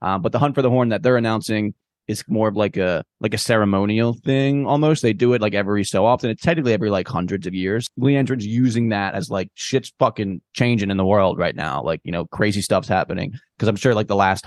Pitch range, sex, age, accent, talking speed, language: 95-120 Hz, male, 20-39, American, 245 wpm, English